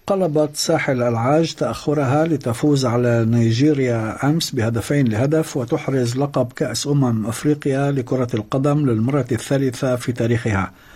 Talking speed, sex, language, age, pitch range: 115 wpm, male, Arabic, 50-69, 115-150 Hz